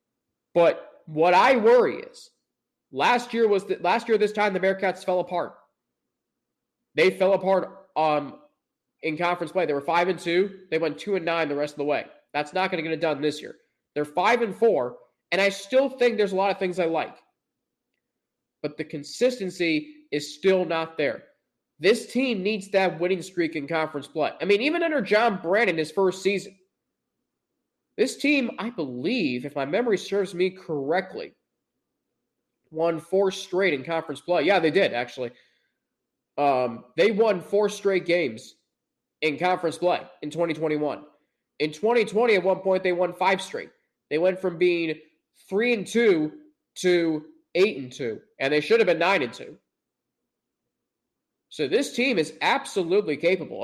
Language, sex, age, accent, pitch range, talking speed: English, male, 20-39, American, 160-205 Hz, 170 wpm